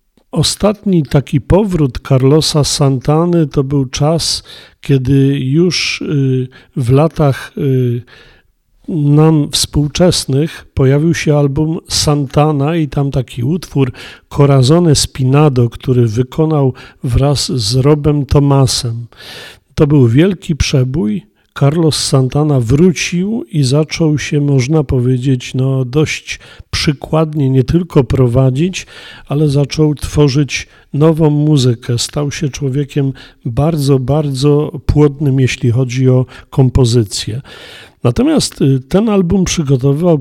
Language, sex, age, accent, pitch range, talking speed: Polish, male, 40-59, native, 130-155 Hz, 100 wpm